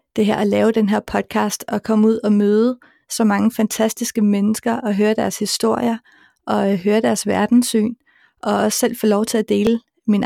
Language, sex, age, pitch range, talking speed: Danish, female, 30-49, 210-235 Hz, 195 wpm